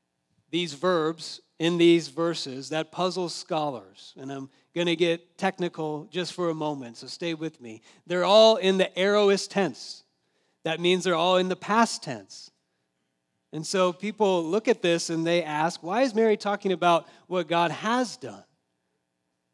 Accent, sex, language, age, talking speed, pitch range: American, male, English, 40-59, 165 wpm, 130-185 Hz